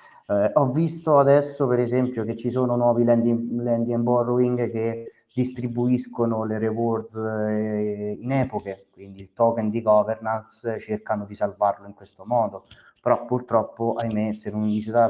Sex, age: male, 30-49